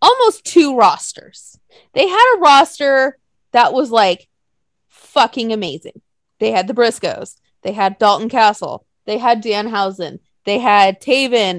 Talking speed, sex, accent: 135 wpm, female, American